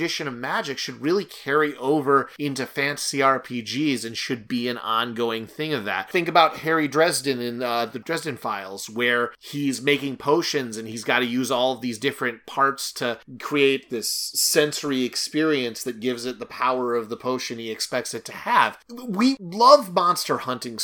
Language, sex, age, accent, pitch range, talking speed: English, male, 30-49, American, 120-160 Hz, 180 wpm